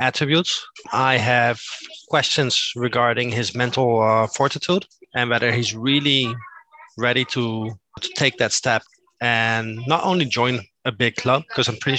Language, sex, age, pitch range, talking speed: English, male, 20-39, 120-155 Hz, 145 wpm